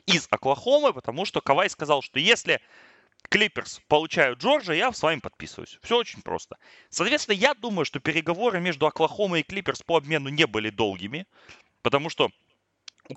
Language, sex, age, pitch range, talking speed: Russian, male, 30-49, 125-180 Hz, 160 wpm